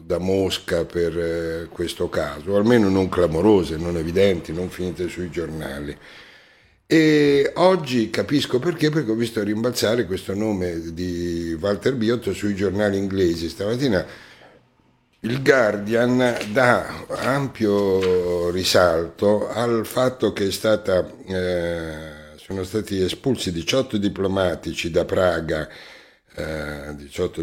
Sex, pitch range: male, 90-110 Hz